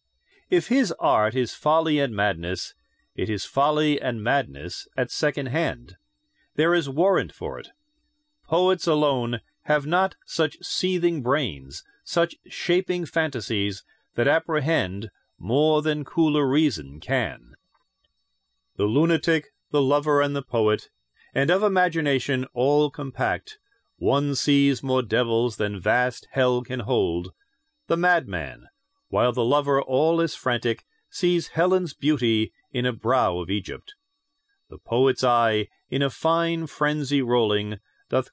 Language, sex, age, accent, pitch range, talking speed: English, male, 40-59, American, 120-165 Hz, 130 wpm